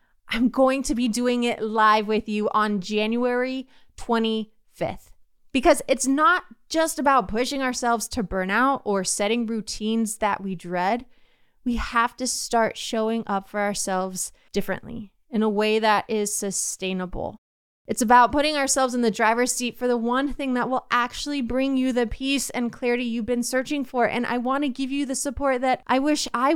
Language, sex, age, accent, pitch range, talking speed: English, female, 20-39, American, 225-280 Hz, 175 wpm